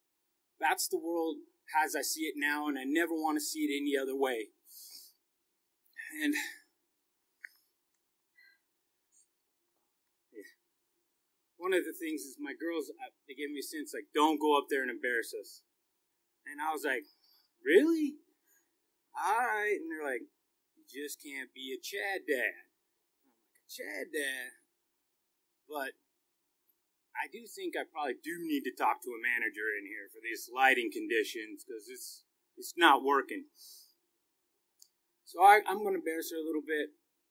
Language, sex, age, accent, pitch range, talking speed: English, male, 30-49, American, 290-370 Hz, 150 wpm